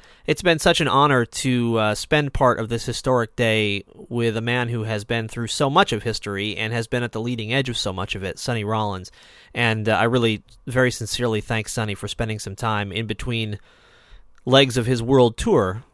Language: English